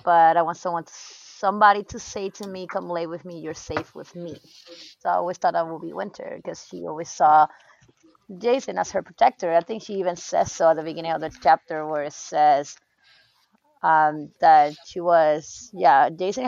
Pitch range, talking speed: 170-230 Hz, 195 wpm